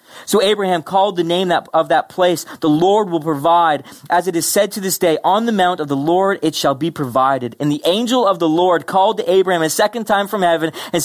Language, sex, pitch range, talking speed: English, male, 170-245 Hz, 240 wpm